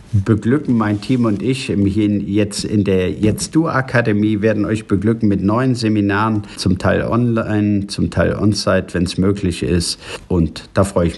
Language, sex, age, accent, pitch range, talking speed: German, male, 50-69, German, 100-125 Hz, 160 wpm